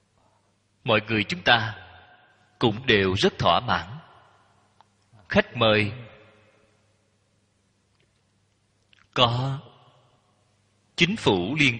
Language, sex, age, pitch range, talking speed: Vietnamese, male, 30-49, 95-120 Hz, 75 wpm